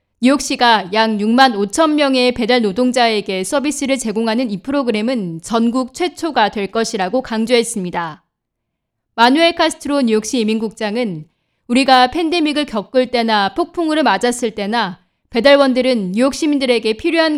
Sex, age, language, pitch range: female, 20-39, Korean, 215-270 Hz